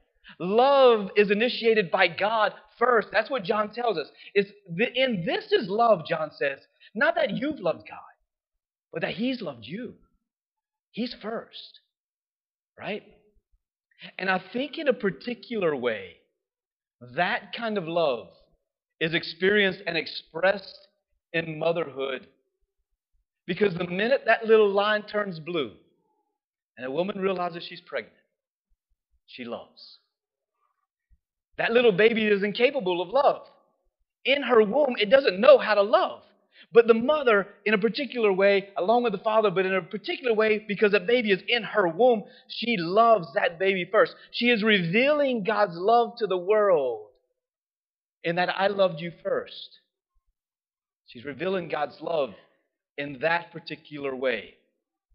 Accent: American